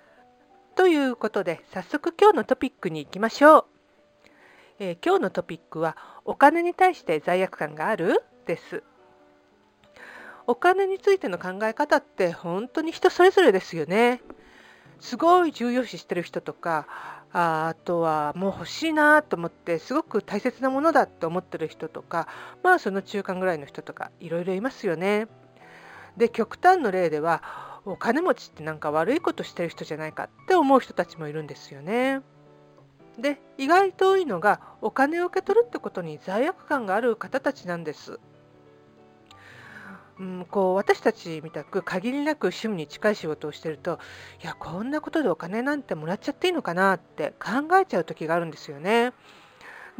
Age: 50-69